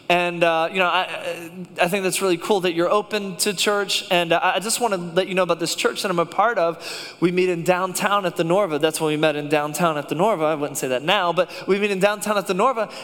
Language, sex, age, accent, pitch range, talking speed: English, male, 20-39, American, 180-205 Hz, 280 wpm